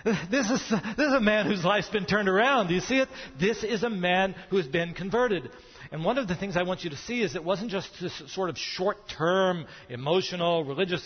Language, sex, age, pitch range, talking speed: English, male, 40-59, 160-195 Hz, 235 wpm